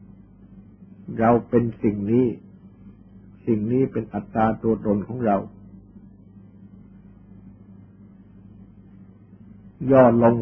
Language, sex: Thai, male